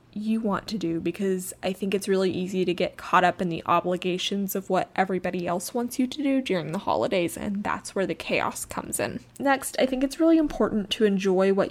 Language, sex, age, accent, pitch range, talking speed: English, female, 20-39, American, 190-235 Hz, 225 wpm